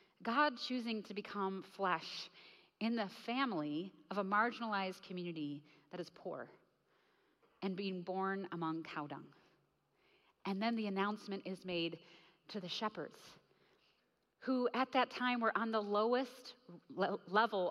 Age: 30-49